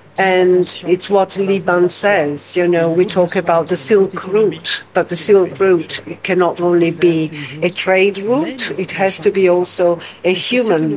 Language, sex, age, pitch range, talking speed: English, female, 60-79, 170-195 Hz, 165 wpm